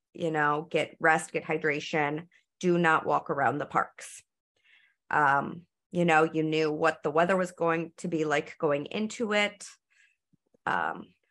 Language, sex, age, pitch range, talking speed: English, female, 30-49, 155-185 Hz, 155 wpm